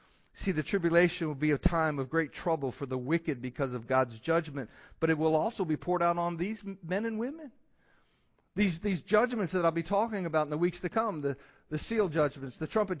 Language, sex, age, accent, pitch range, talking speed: English, male, 50-69, American, 130-170 Hz, 220 wpm